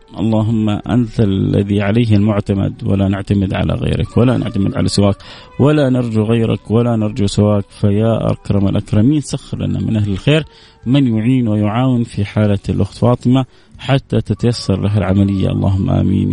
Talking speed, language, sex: 145 wpm, Arabic, male